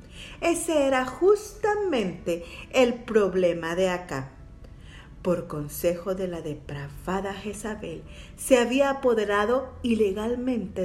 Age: 40-59